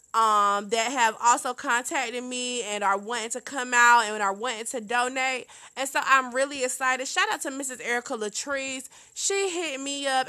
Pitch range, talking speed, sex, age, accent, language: 225-275 Hz, 185 wpm, female, 20-39, American, English